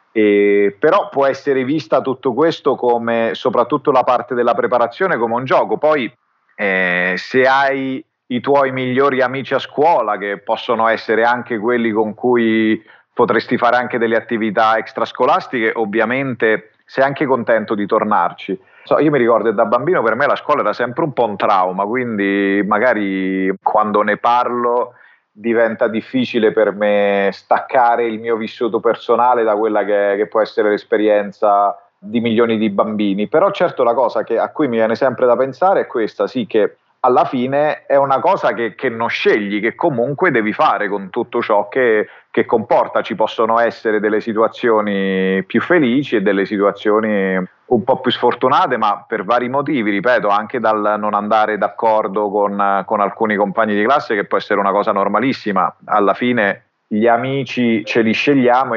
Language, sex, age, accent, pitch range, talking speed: Italian, male, 40-59, native, 105-125 Hz, 165 wpm